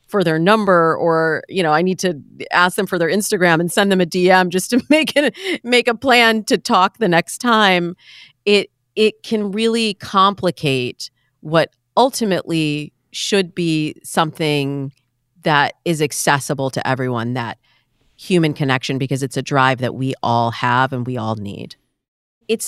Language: English